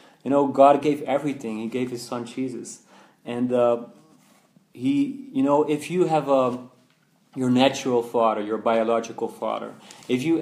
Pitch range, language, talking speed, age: 120-140 Hz, English, 155 wpm, 30-49